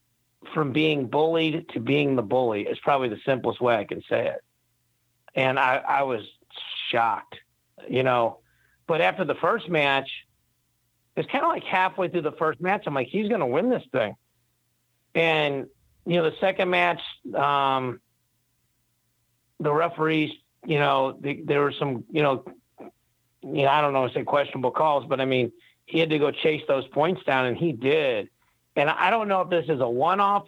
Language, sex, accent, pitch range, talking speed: English, male, American, 130-160 Hz, 180 wpm